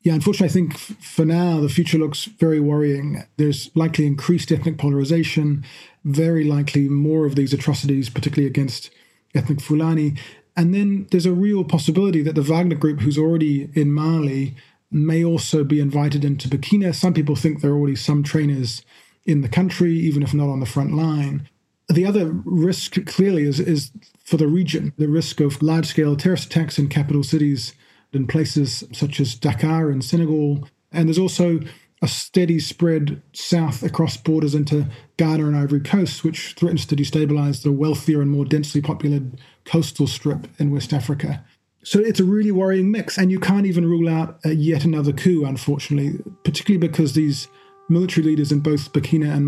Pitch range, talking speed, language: 145-170 Hz, 175 wpm, English